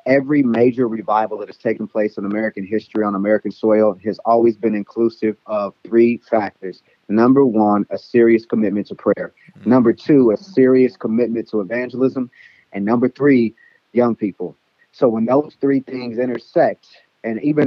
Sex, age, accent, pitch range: male, 30-49, American, 110-135 Hz